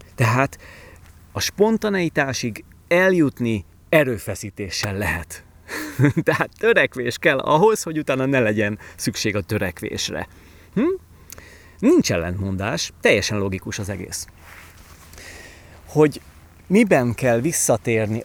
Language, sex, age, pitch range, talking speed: Hungarian, male, 30-49, 95-145 Hz, 90 wpm